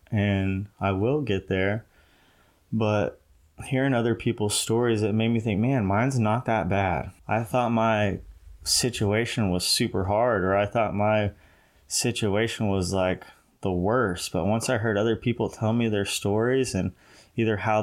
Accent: American